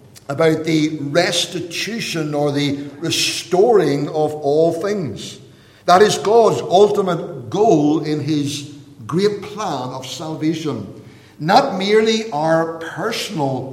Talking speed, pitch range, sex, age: 105 wpm, 145-180 Hz, male, 60-79